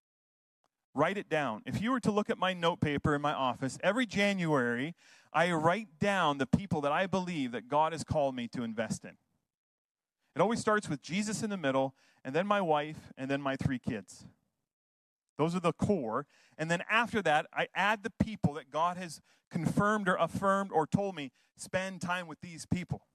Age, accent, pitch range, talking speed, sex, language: 30-49, American, 150-210 Hz, 195 wpm, male, English